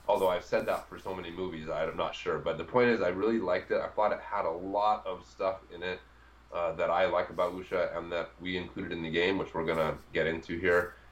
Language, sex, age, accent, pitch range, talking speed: English, male, 30-49, American, 80-105 Hz, 265 wpm